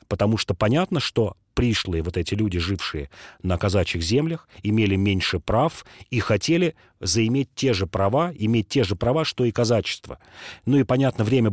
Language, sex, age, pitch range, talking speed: Russian, male, 30-49, 95-120 Hz, 165 wpm